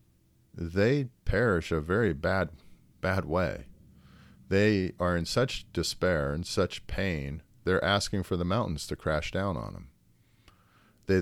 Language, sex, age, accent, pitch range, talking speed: English, male, 50-69, American, 75-110 Hz, 140 wpm